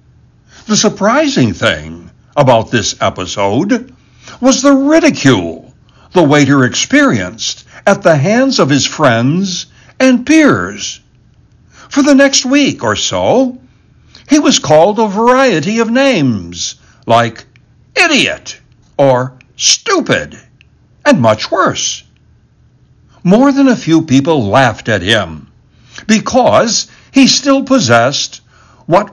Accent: American